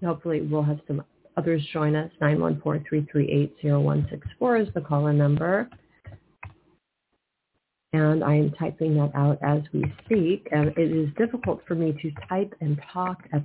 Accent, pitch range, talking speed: American, 145-165 Hz, 145 wpm